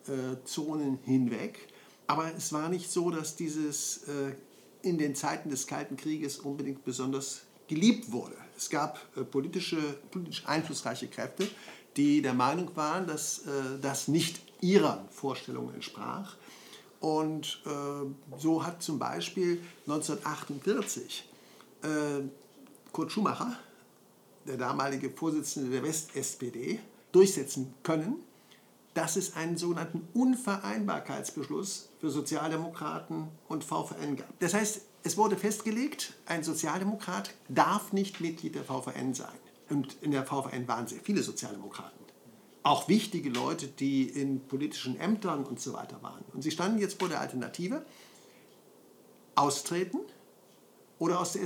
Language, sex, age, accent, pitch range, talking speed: German, male, 60-79, German, 135-175 Hz, 125 wpm